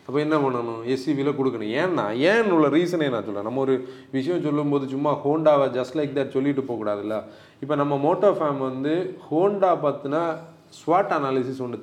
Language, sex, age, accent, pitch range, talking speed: Tamil, male, 30-49, native, 130-180 Hz, 165 wpm